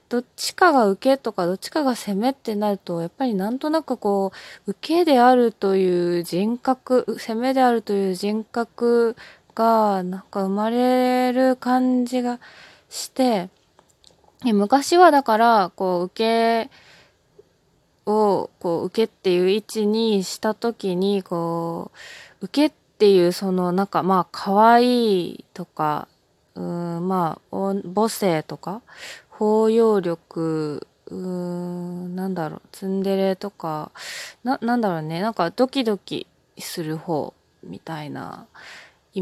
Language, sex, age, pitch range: Japanese, female, 20-39, 180-235 Hz